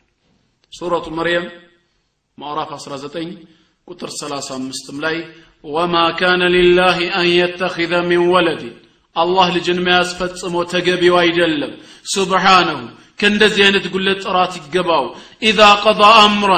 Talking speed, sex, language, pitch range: 100 wpm, male, Amharic, 140-195 Hz